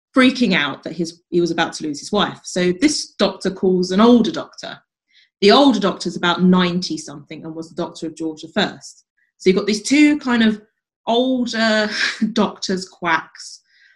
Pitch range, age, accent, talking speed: 165-215 Hz, 30-49, British, 175 wpm